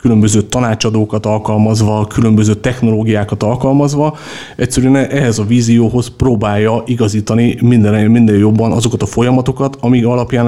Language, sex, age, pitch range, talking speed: Hungarian, male, 30-49, 105-120 Hz, 115 wpm